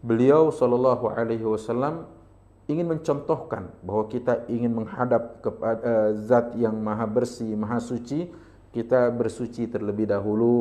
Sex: male